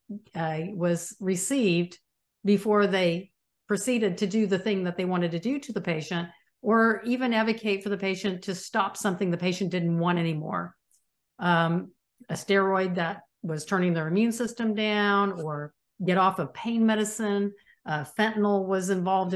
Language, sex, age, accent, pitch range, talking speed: English, female, 50-69, American, 175-210 Hz, 160 wpm